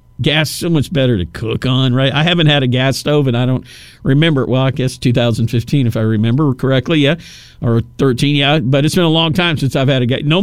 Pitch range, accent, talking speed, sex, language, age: 120-160 Hz, American, 255 wpm, male, English, 50-69